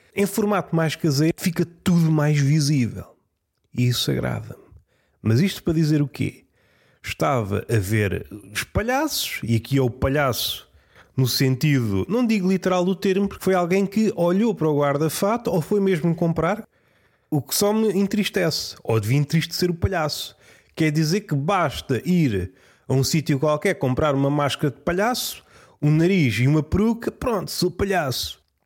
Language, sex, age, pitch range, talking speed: Portuguese, male, 30-49, 140-190 Hz, 165 wpm